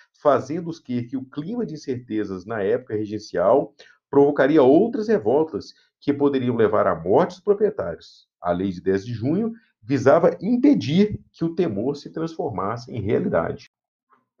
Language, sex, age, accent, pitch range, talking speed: Portuguese, male, 50-69, Brazilian, 130-205 Hz, 140 wpm